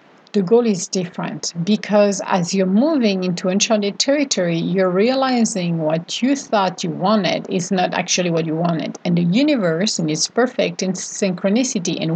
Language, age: English, 50-69